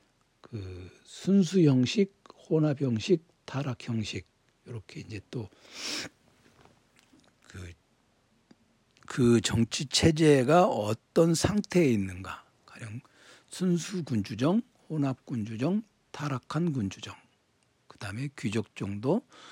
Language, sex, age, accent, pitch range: Korean, male, 60-79, native, 110-155 Hz